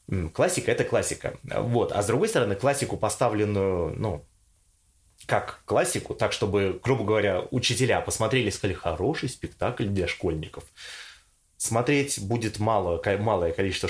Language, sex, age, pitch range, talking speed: Russian, male, 20-39, 100-140 Hz, 115 wpm